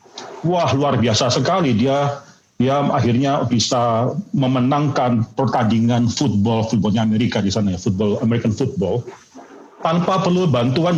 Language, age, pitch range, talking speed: Indonesian, 40-59, 115-155 Hz, 120 wpm